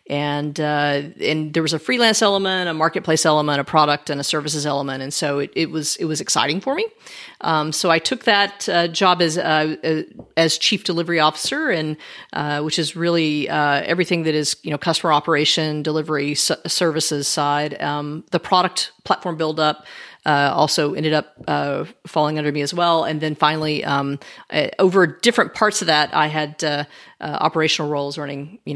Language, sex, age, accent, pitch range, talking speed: English, female, 40-59, American, 150-170 Hz, 190 wpm